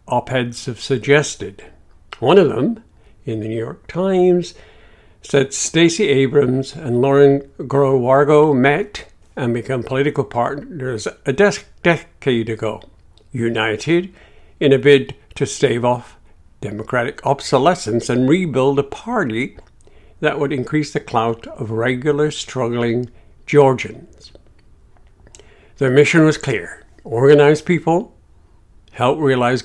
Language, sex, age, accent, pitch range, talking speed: English, male, 60-79, American, 115-150 Hz, 115 wpm